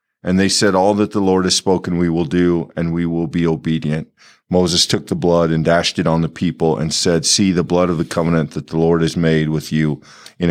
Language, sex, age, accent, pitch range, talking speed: English, male, 50-69, American, 85-105 Hz, 245 wpm